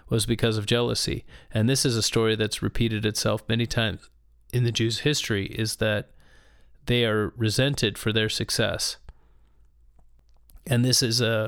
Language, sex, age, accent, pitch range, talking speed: English, male, 30-49, American, 105-120 Hz, 155 wpm